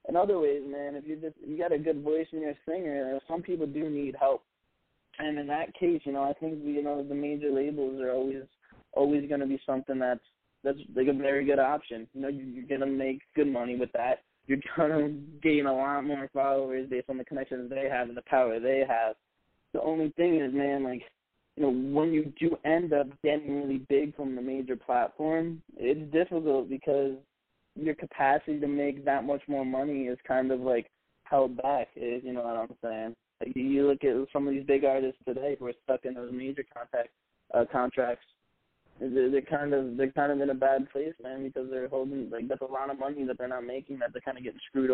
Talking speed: 225 wpm